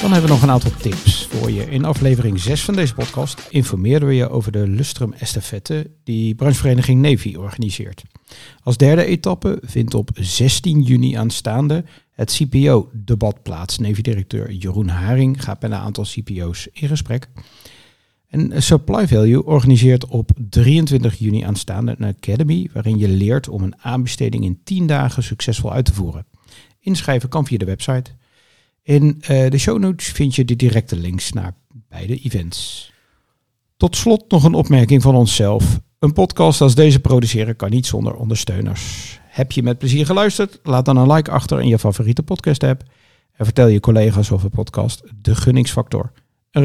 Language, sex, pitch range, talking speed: Dutch, male, 110-140 Hz, 165 wpm